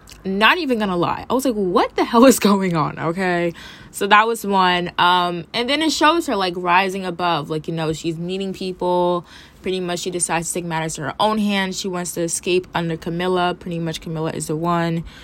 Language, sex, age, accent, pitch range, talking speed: English, female, 20-39, American, 160-195 Hz, 220 wpm